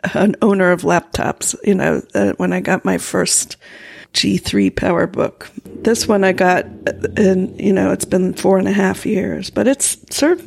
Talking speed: 180 wpm